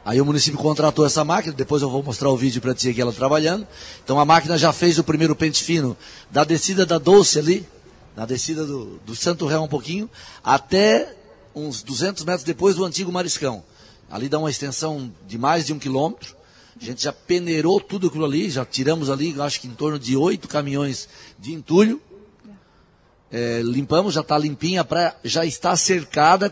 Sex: male